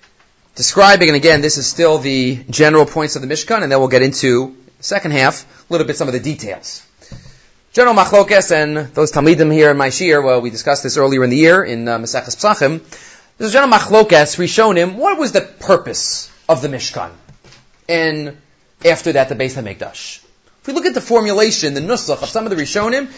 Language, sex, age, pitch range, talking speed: English, male, 30-49, 145-210 Hz, 195 wpm